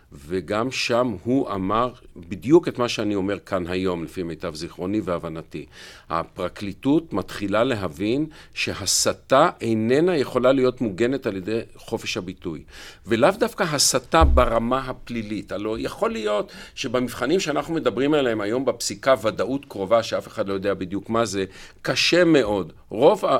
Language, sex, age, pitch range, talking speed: Hebrew, male, 50-69, 100-135 Hz, 135 wpm